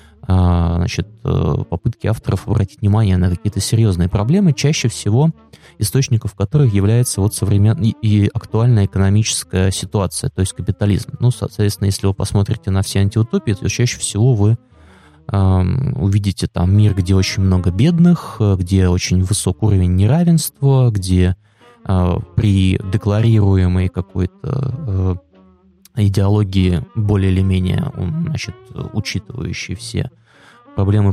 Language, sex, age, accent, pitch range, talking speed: Russian, male, 20-39, native, 95-115 Hz, 120 wpm